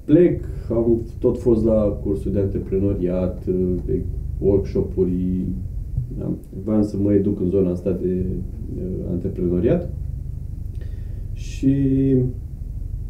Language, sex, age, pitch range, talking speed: Romanian, male, 30-49, 95-120 Hz, 95 wpm